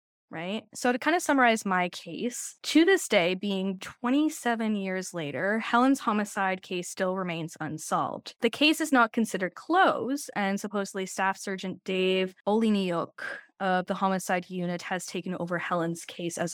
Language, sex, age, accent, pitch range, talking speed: English, female, 10-29, American, 180-235 Hz, 155 wpm